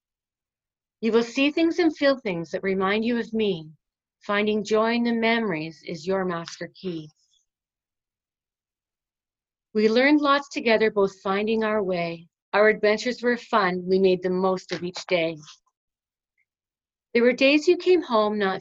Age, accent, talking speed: 40-59, American, 150 wpm